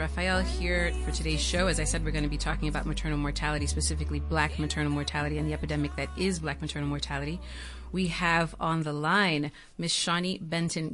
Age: 30-49